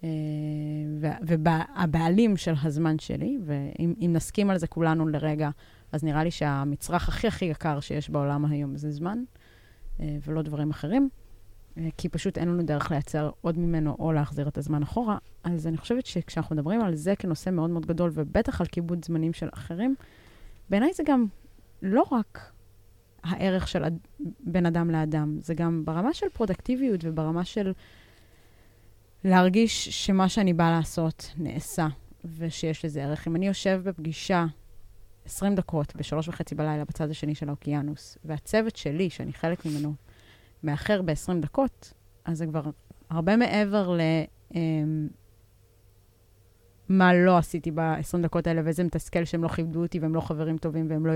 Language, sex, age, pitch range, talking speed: Hebrew, female, 20-39, 150-175 Hz, 150 wpm